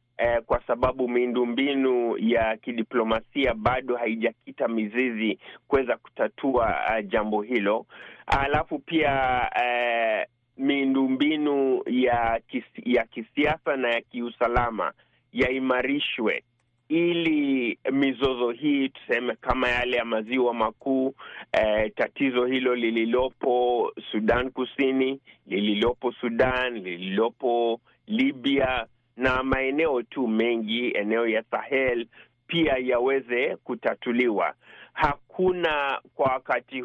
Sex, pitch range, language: male, 120-135 Hz, Swahili